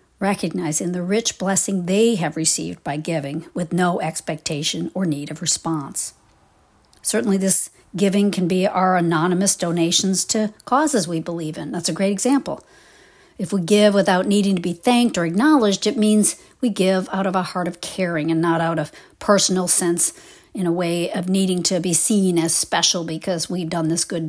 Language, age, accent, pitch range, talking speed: English, 50-69, American, 165-210 Hz, 185 wpm